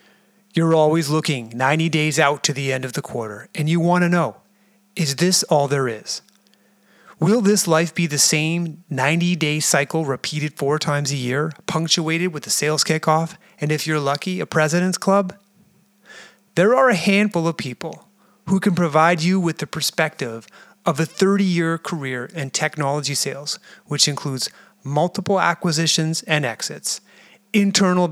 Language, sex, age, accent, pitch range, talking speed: English, male, 30-49, American, 145-190 Hz, 160 wpm